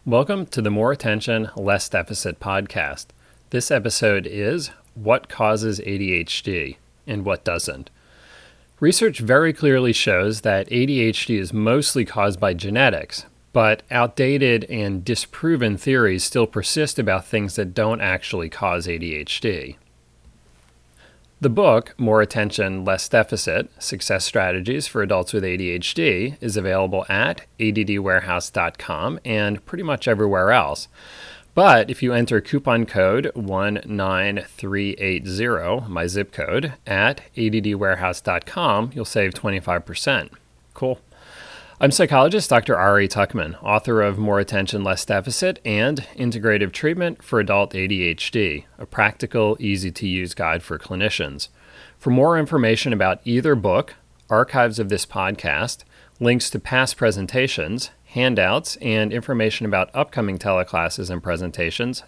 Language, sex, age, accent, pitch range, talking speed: English, male, 30-49, American, 95-120 Hz, 120 wpm